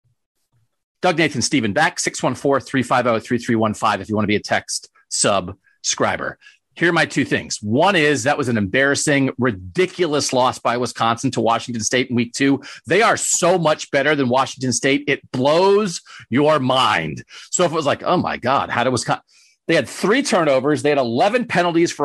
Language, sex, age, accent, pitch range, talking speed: English, male, 40-59, American, 135-220 Hz, 180 wpm